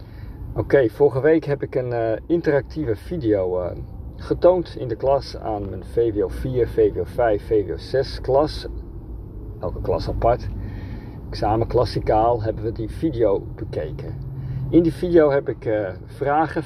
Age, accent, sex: 50-69, Dutch, male